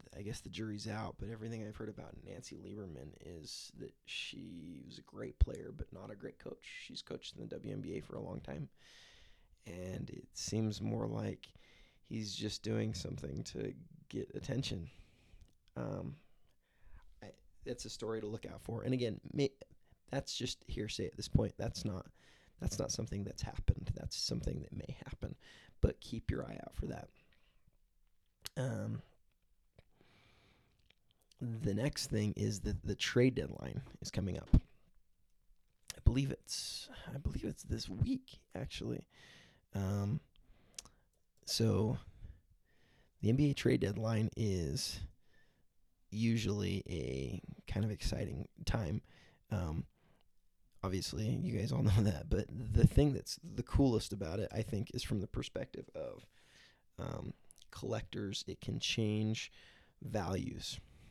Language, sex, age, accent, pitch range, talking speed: English, male, 20-39, American, 100-120 Hz, 140 wpm